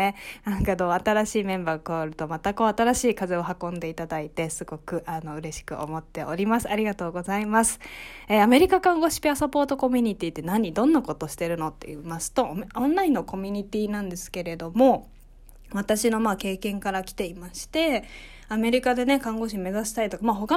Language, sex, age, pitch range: Japanese, female, 20-39, 180-250 Hz